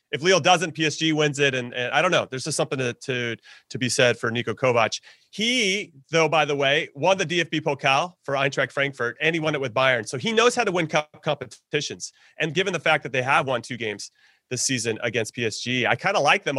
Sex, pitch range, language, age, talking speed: male, 130-180 Hz, English, 30-49, 235 wpm